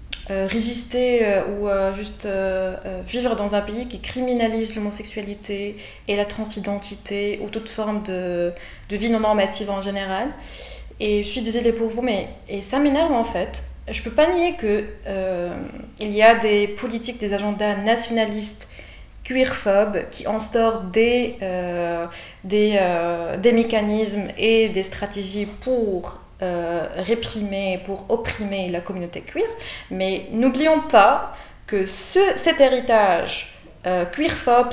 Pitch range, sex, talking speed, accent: 190-230 Hz, female, 145 wpm, French